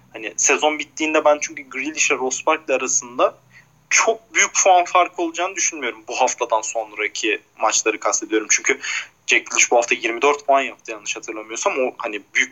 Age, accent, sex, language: 30-49, native, male, Turkish